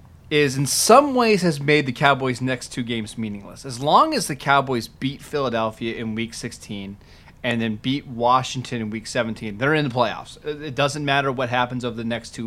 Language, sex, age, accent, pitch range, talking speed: English, male, 30-49, American, 115-145 Hz, 200 wpm